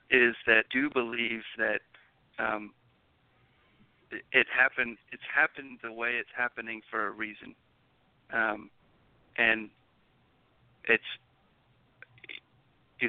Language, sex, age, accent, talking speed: English, male, 50-69, American, 95 wpm